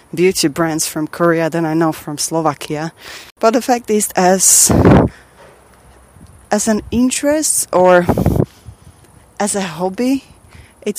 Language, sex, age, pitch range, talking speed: English, female, 20-39, 155-215 Hz, 120 wpm